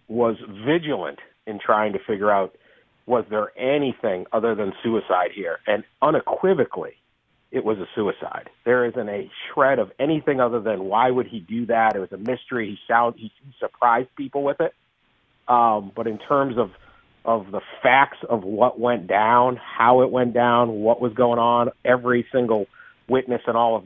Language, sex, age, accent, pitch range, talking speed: English, male, 50-69, American, 110-125 Hz, 175 wpm